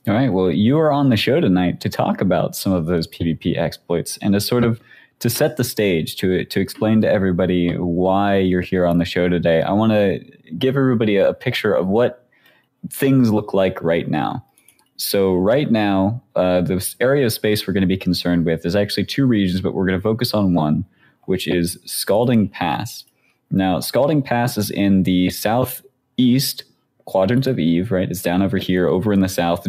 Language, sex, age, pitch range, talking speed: English, male, 20-39, 90-110 Hz, 200 wpm